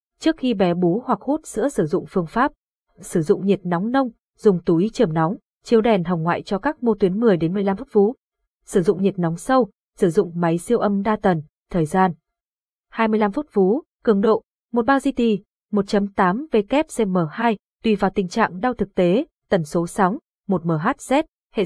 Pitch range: 180-235 Hz